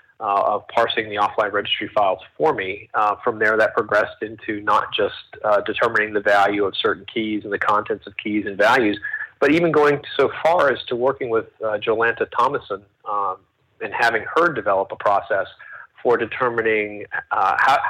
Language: English